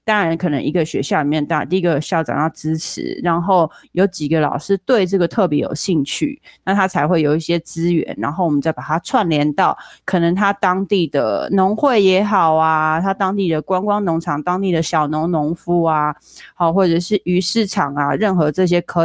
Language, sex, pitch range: Chinese, female, 160-215 Hz